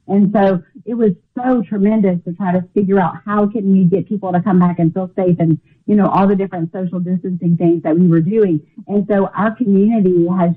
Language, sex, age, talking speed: English, female, 40-59, 225 wpm